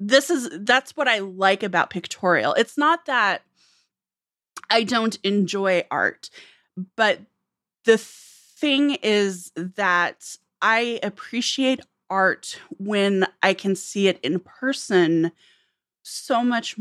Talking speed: 115 wpm